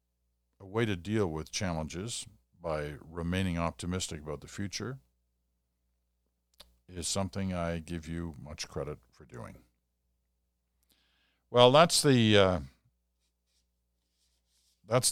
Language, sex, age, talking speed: English, male, 50-69, 105 wpm